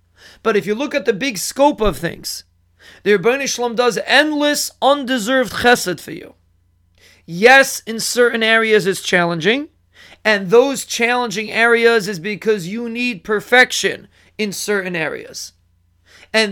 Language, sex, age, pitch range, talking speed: English, male, 40-59, 190-235 Hz, 140 wpm